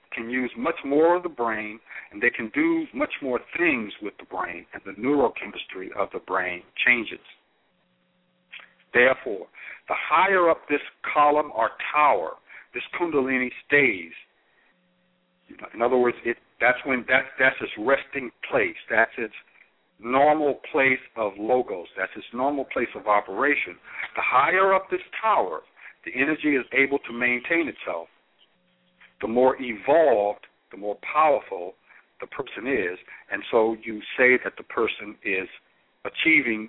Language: English